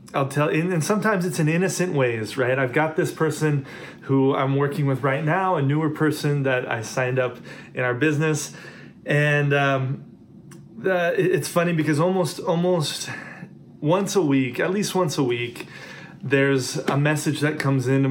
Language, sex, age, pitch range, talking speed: English, male, 30-49, 135-175 Hz, 170 wpm